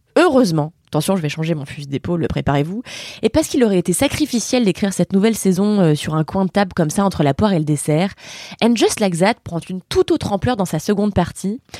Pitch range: 180-245 Hz